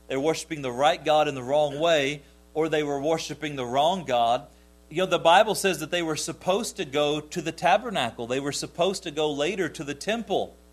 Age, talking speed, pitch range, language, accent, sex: 40-59, 220 wpm, 120-185 Hz, English, American, male